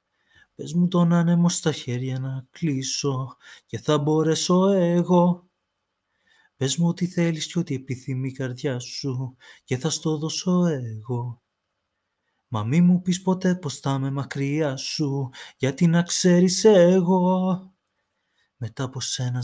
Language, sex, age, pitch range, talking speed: Greek, male, 30-49, 145-180 Hz, 135 wpm